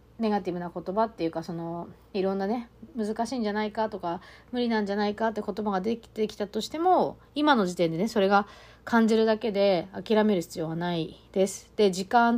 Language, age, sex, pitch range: Japanese, 40-59, female, 185-230 Hz